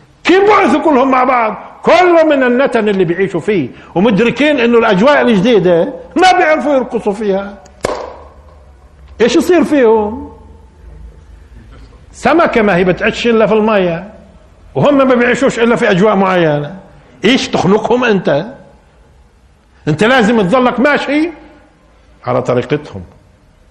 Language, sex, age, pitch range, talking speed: Arabic, male, 50-69, 155-255 Hz, 115 wpm